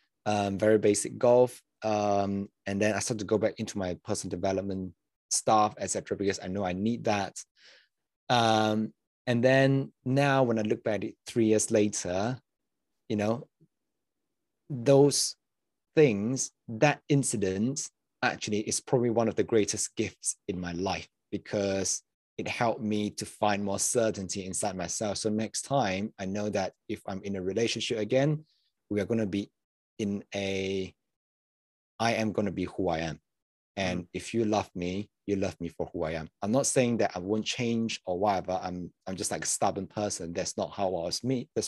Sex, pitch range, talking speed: male, 100-115 Hz, 180 wpm